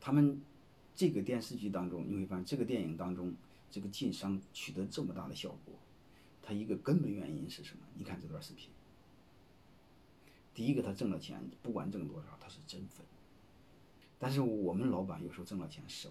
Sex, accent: male, native